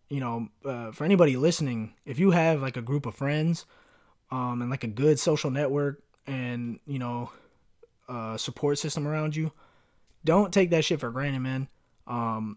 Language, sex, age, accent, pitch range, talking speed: English, male, 20-39, American, 120-150 Hz, 175 wpm